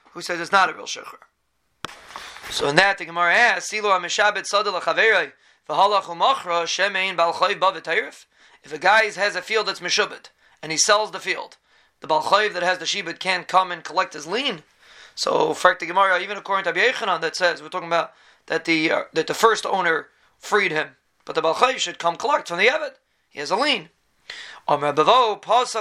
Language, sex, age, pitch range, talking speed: English, male, 30-49, 170-205 Hz, 165 wpm